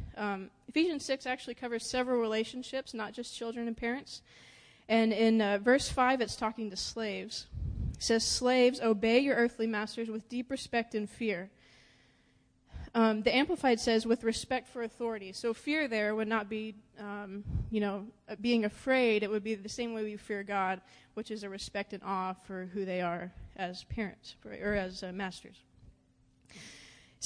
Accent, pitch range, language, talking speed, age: American, 205-245 Hz, English, 170 wpm, 20-39